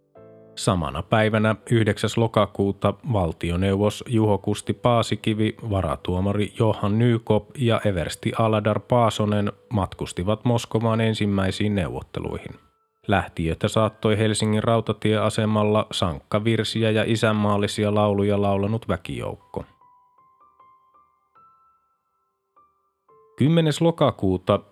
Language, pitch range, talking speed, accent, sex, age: Finnish, 100-120 Hz, 75 wpm, native, male, 30-49